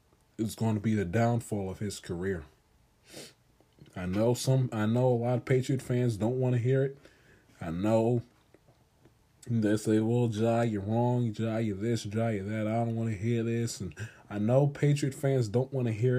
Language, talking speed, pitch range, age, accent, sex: English, 195 wpm, 110-135 Hz, 20-39, American, male